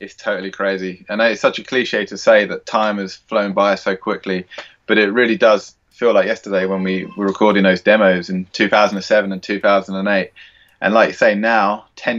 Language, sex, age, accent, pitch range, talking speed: English, male, 20-39, British, 100-115 Hz, 195 wpm